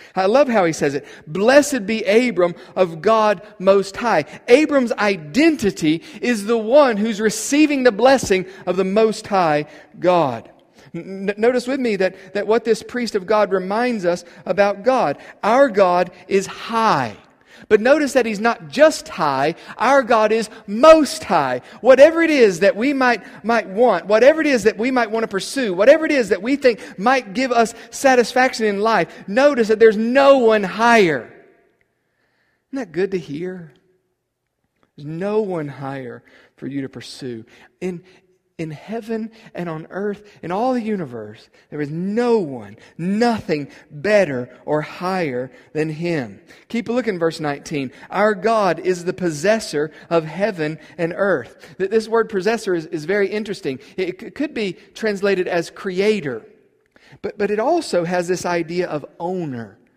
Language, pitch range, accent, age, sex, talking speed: English, 175-230 Hz, American, 50-69, male, 165 wpm